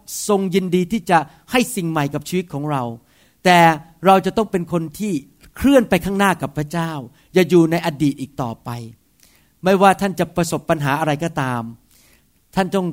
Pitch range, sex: 160-205 Hz, male